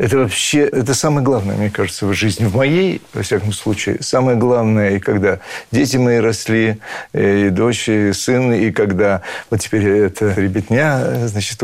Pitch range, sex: 110-135 Hz, male